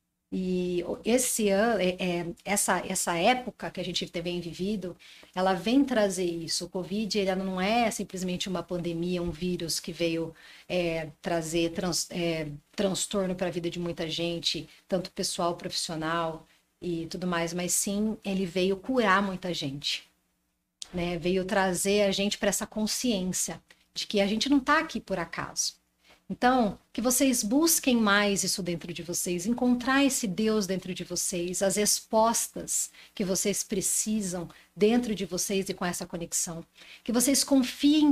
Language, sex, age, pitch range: Portuguese, female, 40-59, 175-235 Hz